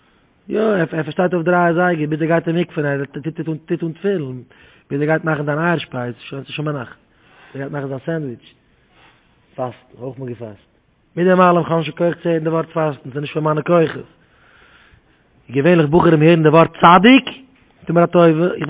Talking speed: 200 wpm